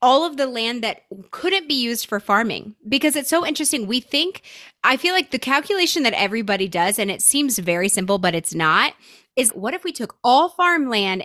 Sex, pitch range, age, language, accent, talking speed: female, 200-290 Hz, 20-39, English, American, 210 wpm